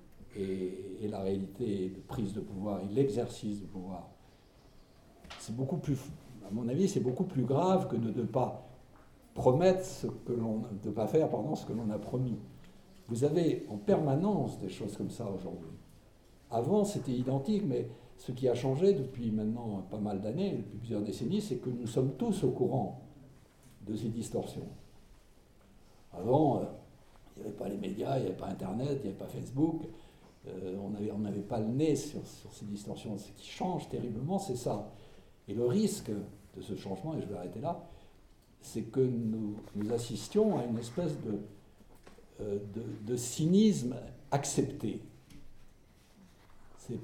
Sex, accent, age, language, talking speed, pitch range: male, French, 60-79, French, 175 wpm, 105-140 Hz